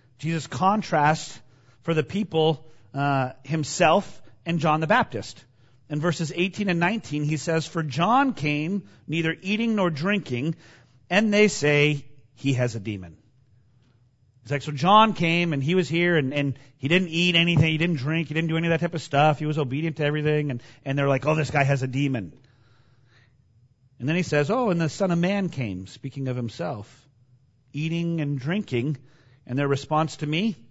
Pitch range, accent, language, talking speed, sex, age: 125-165 Hz, American, English, 190 wpm, male, 40-59